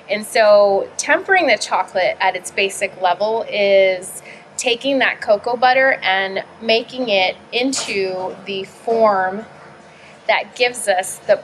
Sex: female